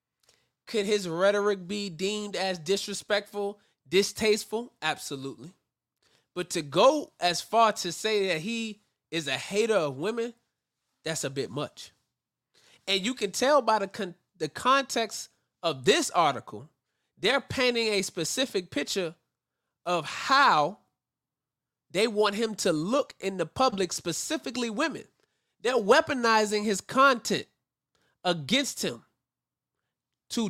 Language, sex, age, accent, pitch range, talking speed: English, male, 20-39, American, 170-220 Hz, 125 wpm